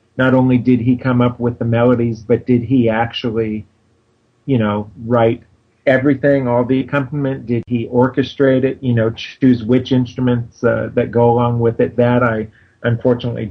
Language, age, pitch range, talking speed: English, 40-59, 110-125 Hz, 170 wpm